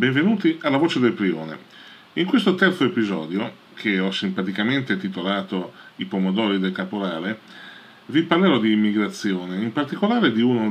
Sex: male